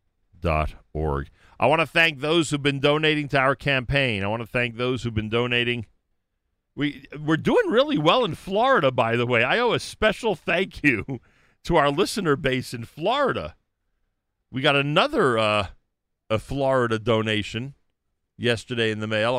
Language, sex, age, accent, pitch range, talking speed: English, male, 50-69, American, 95-125 Hz, 165 wpm